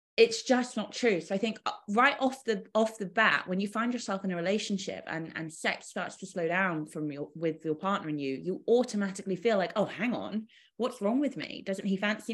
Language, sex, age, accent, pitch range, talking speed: English, female, 20-39, British, 155-220 Hz, 235 wpm